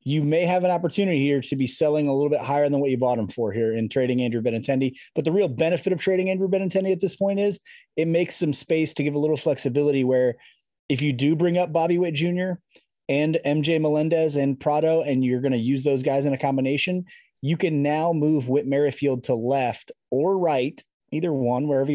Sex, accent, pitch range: male, American, 130-155 Hz